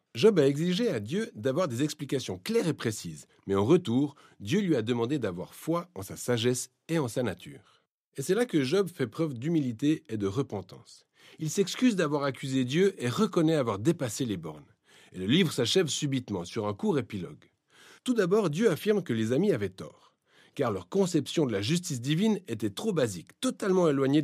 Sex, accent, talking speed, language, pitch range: male, French, 195 wpm, French, 125-195 Hz